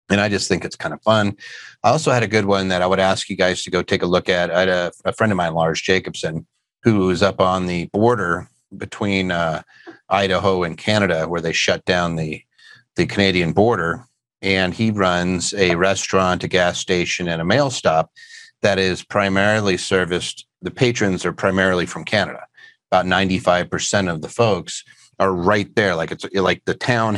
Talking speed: 200 wpm